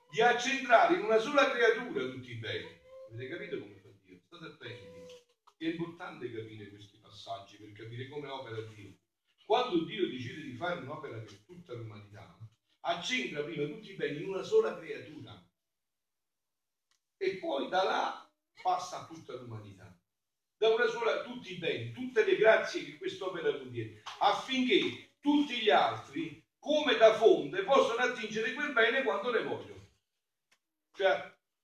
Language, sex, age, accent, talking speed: Italian, male, 50-69, native, 150 wpm